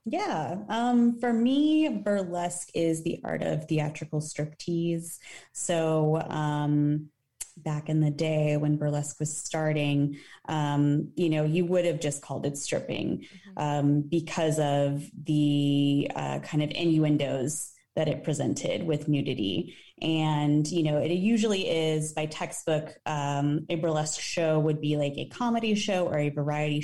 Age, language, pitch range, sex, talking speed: 20-39, English, 145-170 Hz, female, 145 wpm